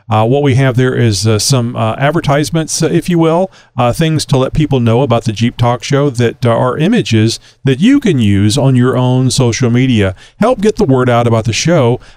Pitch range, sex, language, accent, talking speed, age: 115-145 Hz, male, English, American, 220 wpm, 40-59